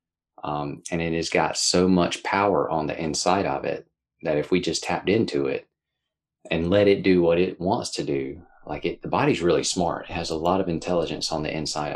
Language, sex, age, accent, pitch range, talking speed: German, male, 30-49, American, 75-90 Hz, 220 wpm